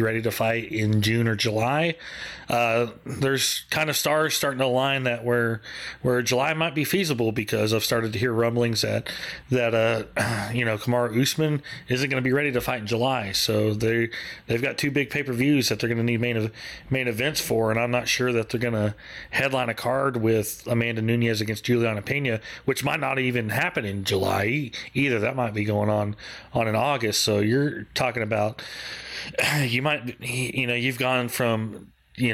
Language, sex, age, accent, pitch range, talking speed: English, male, 30-49, American, 115-135 Hz, 195 wpm